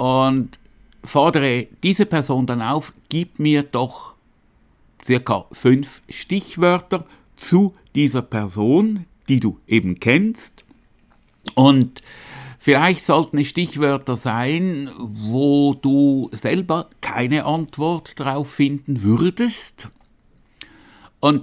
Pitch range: 115-155 Hz